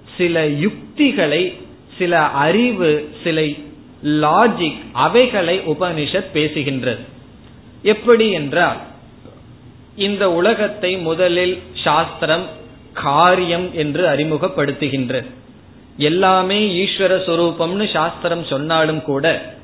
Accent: native